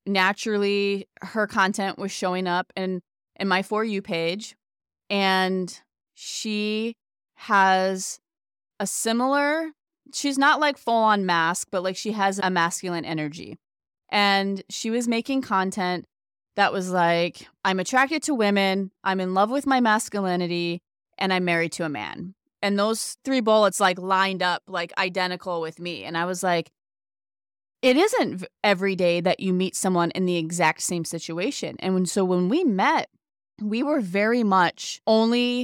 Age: 20-39